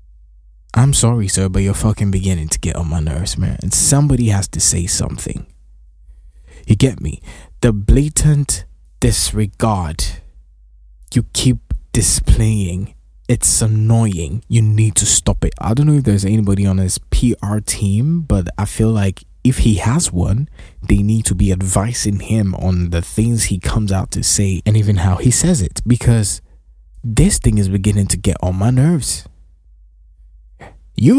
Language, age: English, 20-39